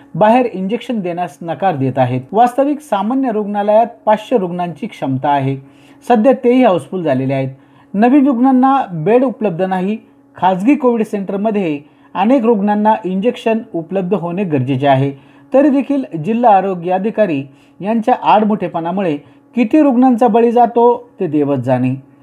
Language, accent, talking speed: Marathi, native, 125 wpm